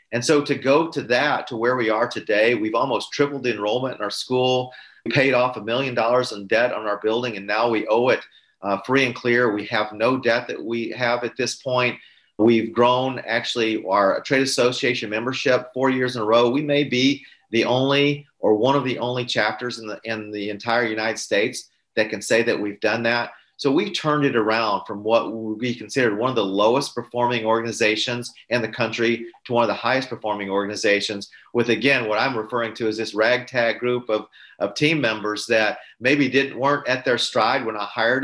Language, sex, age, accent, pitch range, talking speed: English, male, 40-59, American, 110-140 Hz, 210 wpm